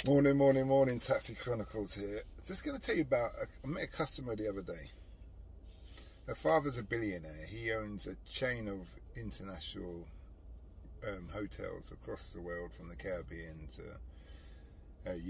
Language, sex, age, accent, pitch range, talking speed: English, male, 30-49, British, 85-110 Hz, 155 wpm